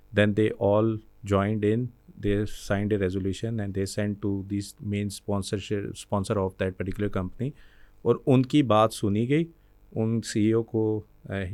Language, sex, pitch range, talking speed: Urdu, male, 100-115 Hz, 160 wpm